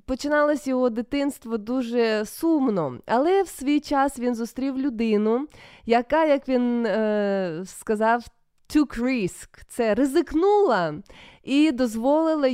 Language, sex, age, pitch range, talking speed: Ukrainian, female, 20-39, 210-265 Hz, 110 wpm